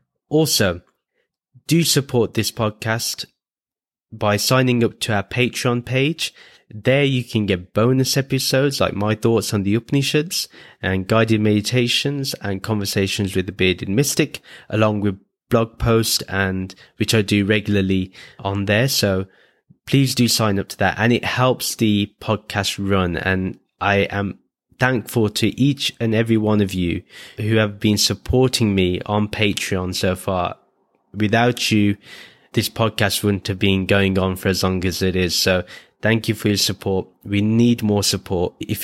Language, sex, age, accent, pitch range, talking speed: English, male, 20-39, British, 95-120 Hz, 160 wpm